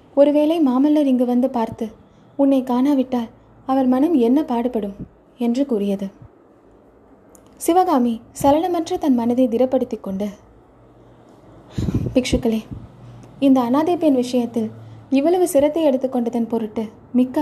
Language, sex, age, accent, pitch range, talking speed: Tamil, female, 20-39, native, 225-275 Hz, 100 wpm